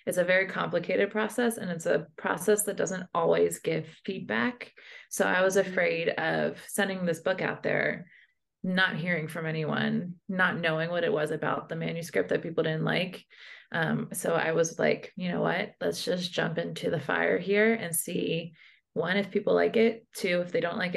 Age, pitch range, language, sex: 20-39, 160-210 Hz, English, female